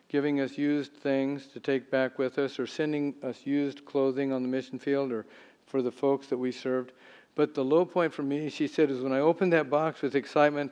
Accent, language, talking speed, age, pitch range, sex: American, English, 230 wpm, 50-69, 130-150 Hz, male